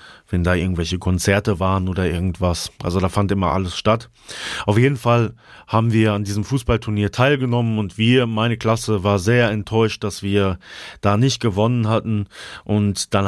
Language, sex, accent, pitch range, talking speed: German, male, German, 100-120 Hz, 165 wpm